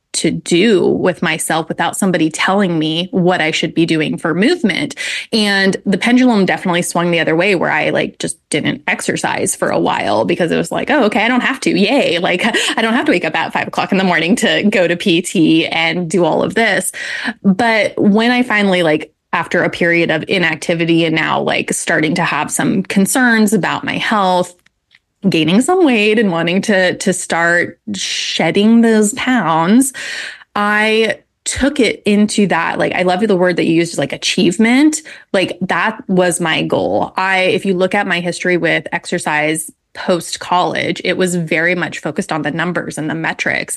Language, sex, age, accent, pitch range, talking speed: English, female, 20-39, American, 170-215 Hz, 190 wpm